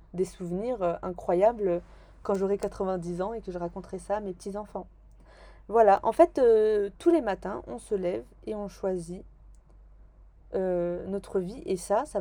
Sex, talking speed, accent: female, 170 wpm, French